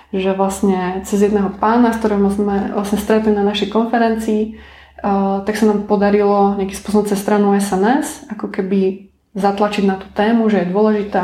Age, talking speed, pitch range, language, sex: 20-39, 165 wpm, 195-215 Hz, Slovak, female